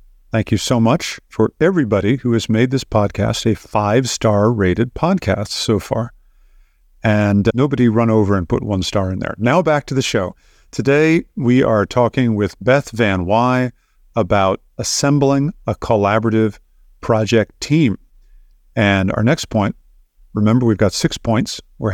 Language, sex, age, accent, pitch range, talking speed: English, male, 50-69, American, 105-125 Hz, 155 wpm